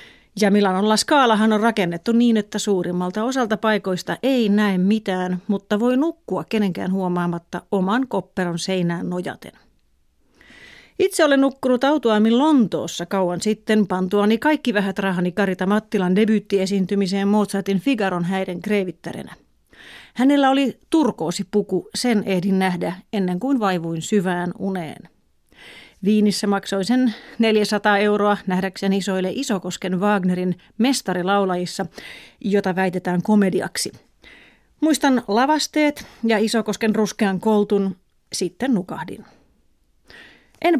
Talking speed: 110 wpm